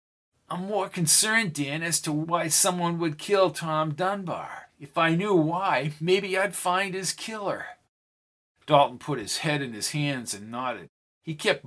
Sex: male